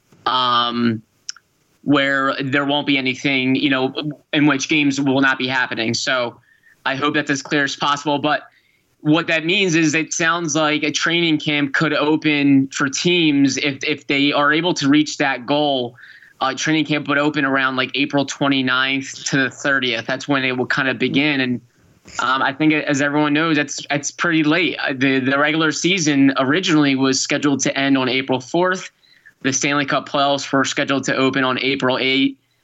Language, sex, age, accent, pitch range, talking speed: English, male, 20-39, American, 135-150 Hz, 185 wpm